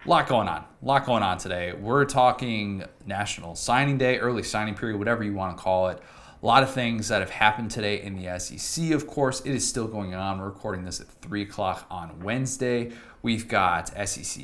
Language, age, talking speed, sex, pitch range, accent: English, 30-49, 210 wpm, male, 100-130 Hz, American